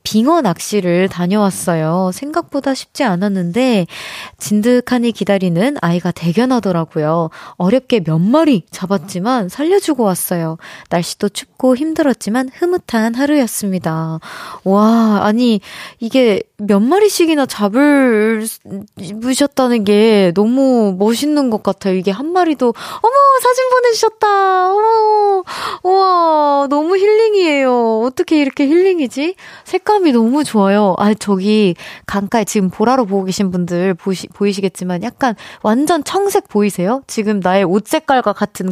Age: 20-39